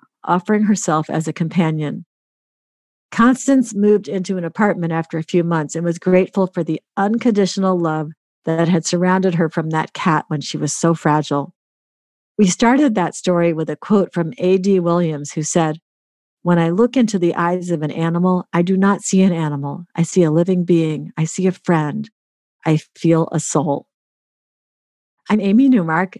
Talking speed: 175 wpm